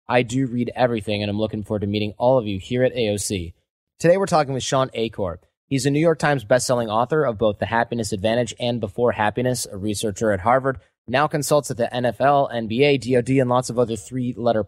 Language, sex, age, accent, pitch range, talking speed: English, male, 20-39, American, 105-135 Hz, 220 wpm